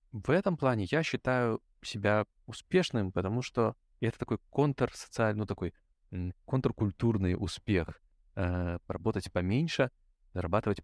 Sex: male